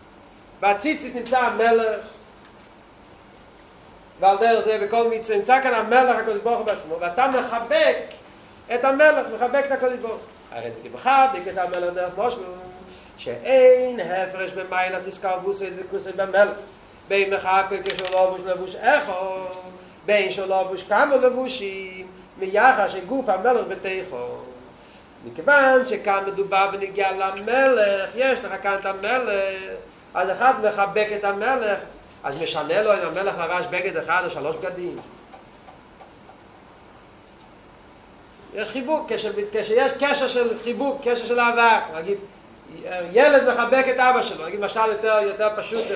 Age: 40-59